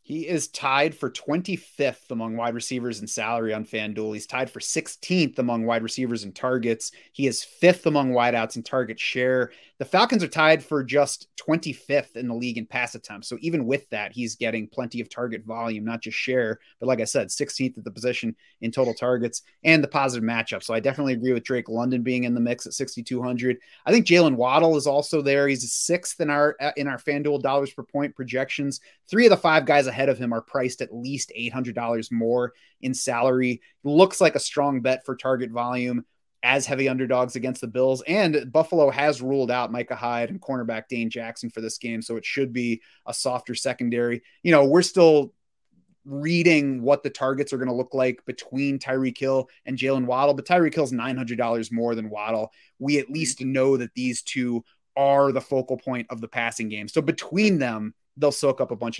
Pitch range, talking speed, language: 120-145 Hz, 205 wpm, English